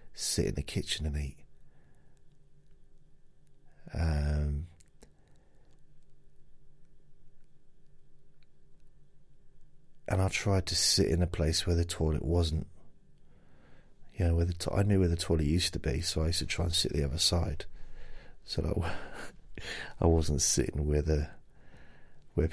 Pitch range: 80-95 Hz